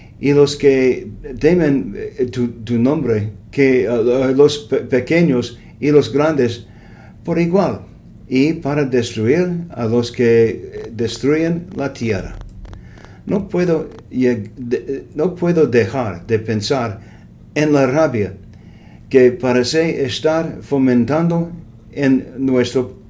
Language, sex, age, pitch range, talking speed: English, male, 50-69, 110-150 Hz, 115 wpm